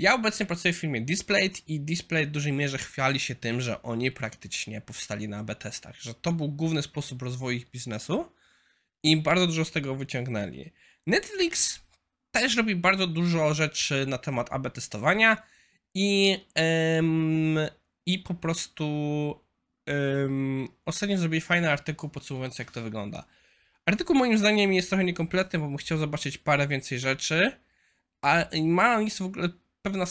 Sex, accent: male, native